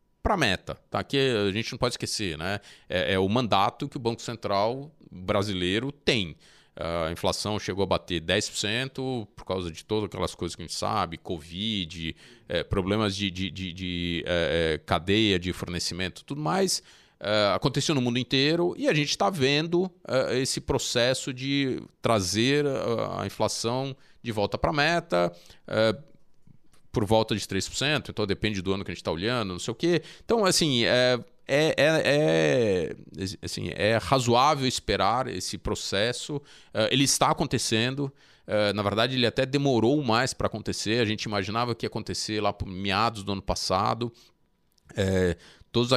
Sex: male